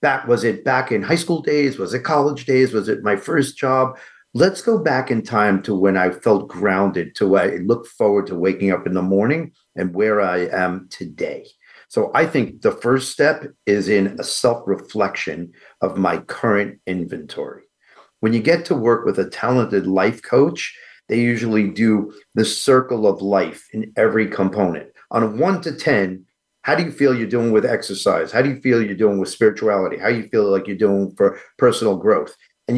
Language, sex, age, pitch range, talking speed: English, male, 50-69, 100-140 Hz, 200 wpm